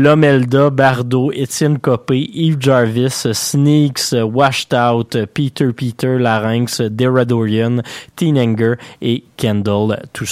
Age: 20-39